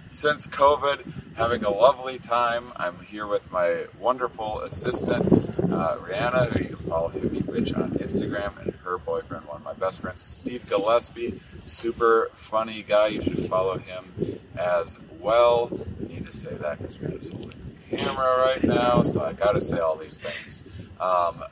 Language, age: English, 30-49